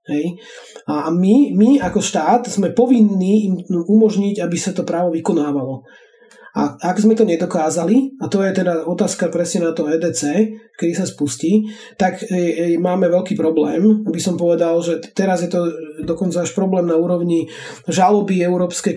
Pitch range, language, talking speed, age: 165-195 Hz, Slovak, 160 wpm, 30-49